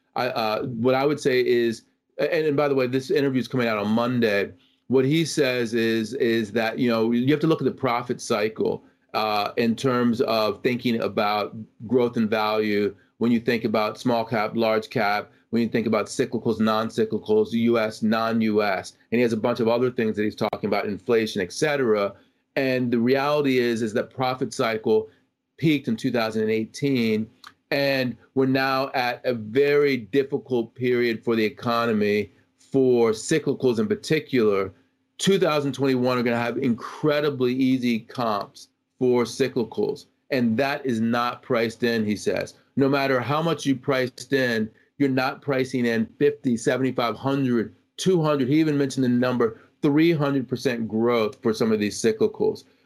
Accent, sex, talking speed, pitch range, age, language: American, male, 165 wpm, 115-135 Hz, 40-59, English